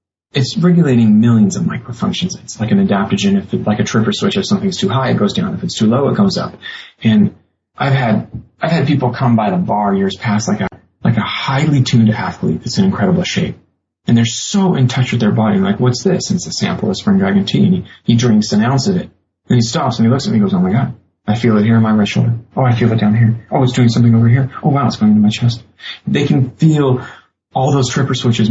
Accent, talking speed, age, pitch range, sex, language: American, 265 wpm, 30-49, 110-145 Hz, male, English